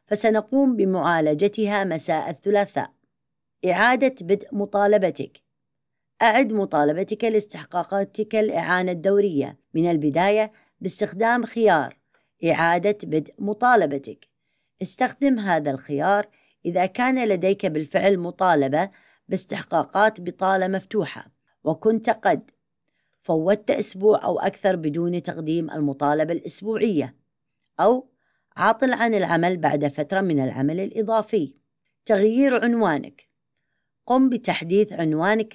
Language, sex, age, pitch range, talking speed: Arabic, female, 30-49, 155-215 Hz, 90 wpm